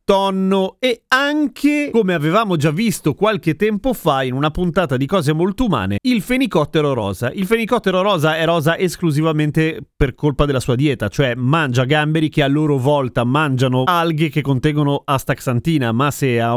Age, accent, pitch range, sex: 30-49, native, 125-170 Hz, male